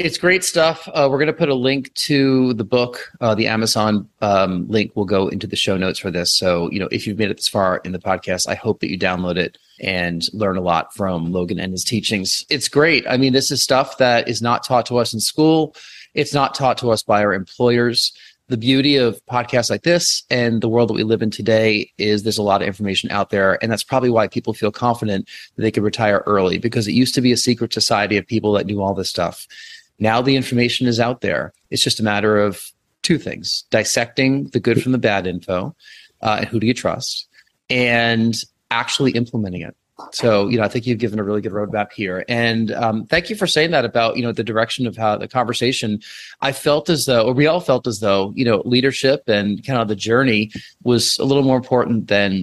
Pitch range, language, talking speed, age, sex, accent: 105-130 Hz, English, 235 wpm, 30-49, male, American